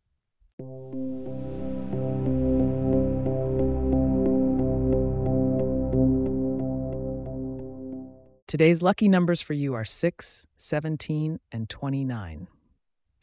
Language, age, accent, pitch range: English, 30-49, American, 100-160 Hz